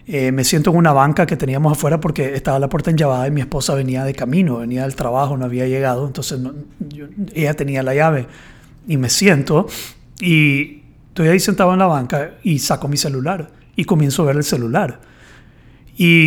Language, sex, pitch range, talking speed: Spanish, male, 135-180 Hz, 200 wpm